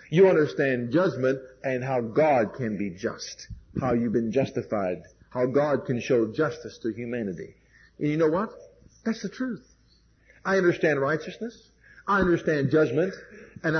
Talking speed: 150 wpm